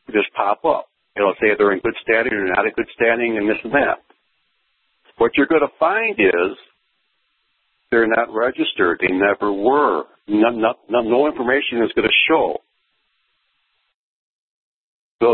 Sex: male